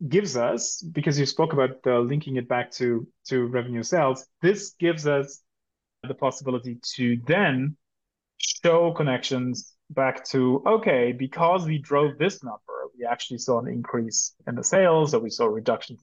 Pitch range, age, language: 125-160 Hz, 30-49, English